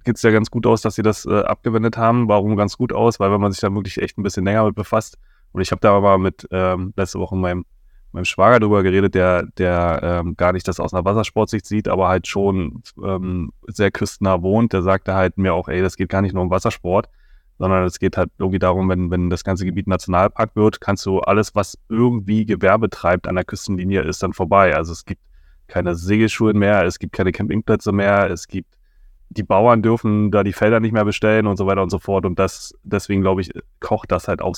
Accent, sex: German, male